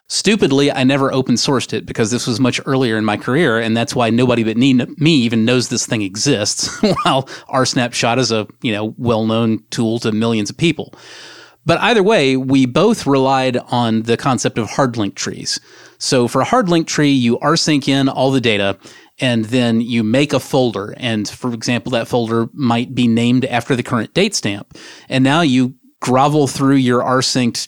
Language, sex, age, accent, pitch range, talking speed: English, male, 30-49, American, 115-135 Hz, 195 wpm